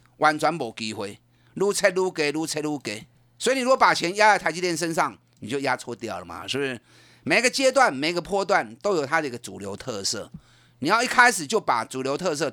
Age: 30-49